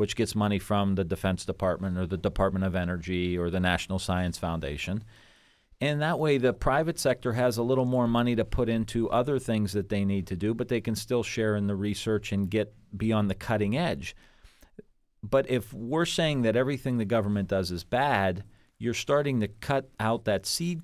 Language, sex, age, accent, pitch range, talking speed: English, male, 40-59, American, 95-110 Hz, 200 wpm